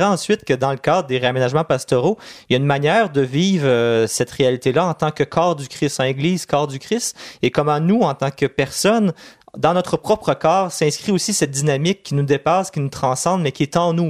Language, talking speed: French, 235 wpm